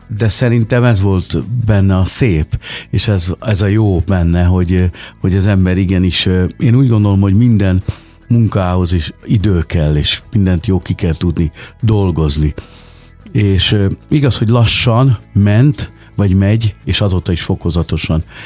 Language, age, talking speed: Hungarian, 50-69, 145 wpm